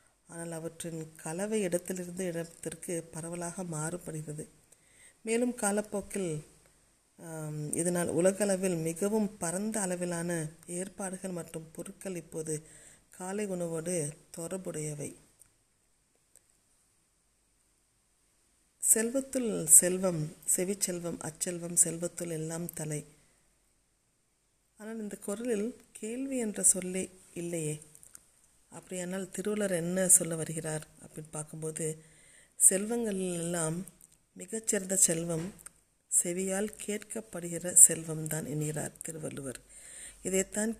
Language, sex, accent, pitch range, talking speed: Tamil, female, native, 160-200 Hz, 75 wpm